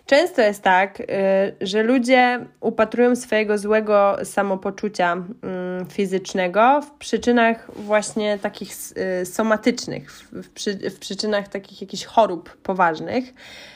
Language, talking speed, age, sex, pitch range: Polish, 90 wpm, 20-39, female, 195-235 Hz